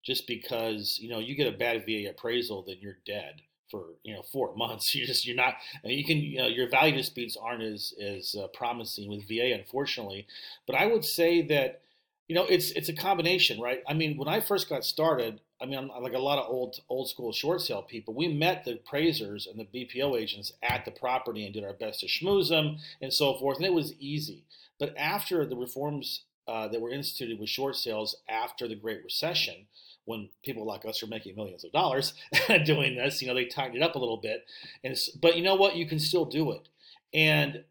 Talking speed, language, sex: 225 wpm, English, male